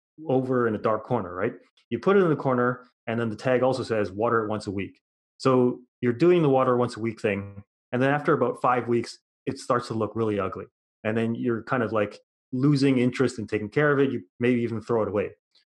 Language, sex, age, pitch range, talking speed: English, male, 30-49, 115-135 Hz, 240 wpm